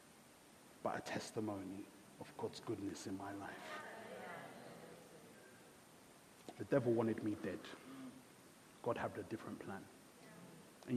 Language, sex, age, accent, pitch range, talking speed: English, male, 30-49, British, 115-145 Hz, 110 wpm